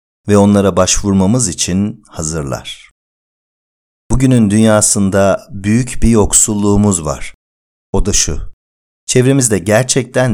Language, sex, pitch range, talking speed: Turkish, male, 95-125 Hz, 95 wpm